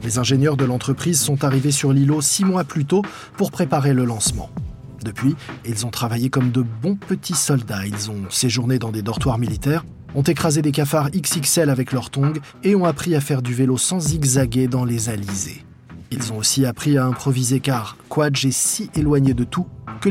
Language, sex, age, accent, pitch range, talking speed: French, male, 20-39, French, 120-150 Hz, 195 wpm